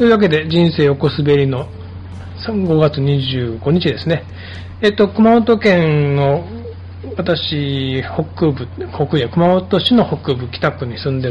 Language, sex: Japanese, male